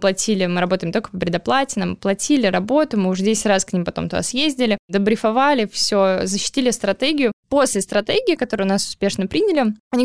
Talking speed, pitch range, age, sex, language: 175 wpm, 195-245 Hz, 10-29, female, Russian